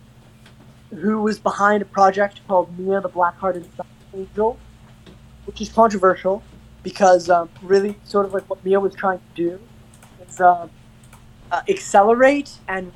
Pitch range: 140-200 Hz